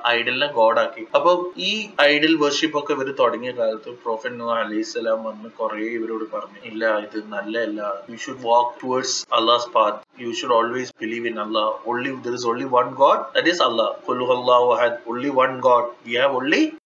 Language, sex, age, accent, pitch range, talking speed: Malayalam, male, 20-39, native, 120-185 Hz, 35 wpm